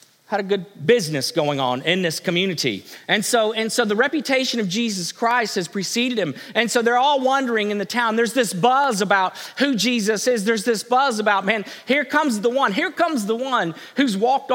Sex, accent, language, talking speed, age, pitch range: male, American, English, 210 wpm, 40-59, 170-260 Hz